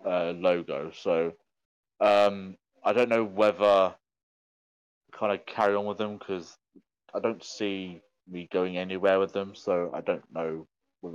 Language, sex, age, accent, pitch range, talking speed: English, male, 20-39, British, 80-100 Hz, 150 wpm